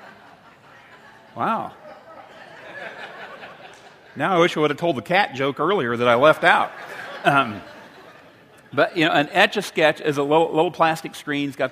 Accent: American